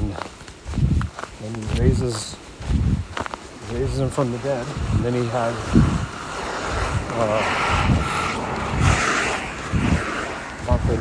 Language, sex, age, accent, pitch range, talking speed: English, male, 60-79, American, 105-135 Hz, 75 wpm